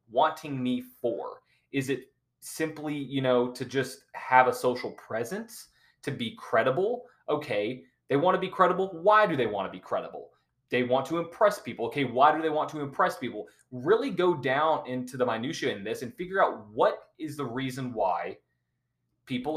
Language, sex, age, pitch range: English, male, 20-39, 120-155 Hz